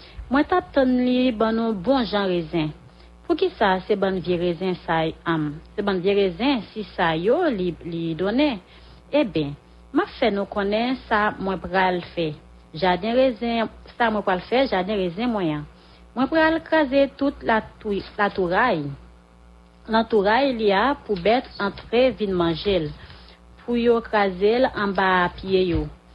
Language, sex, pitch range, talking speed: English, female, 175-235 Hz, 165 wpm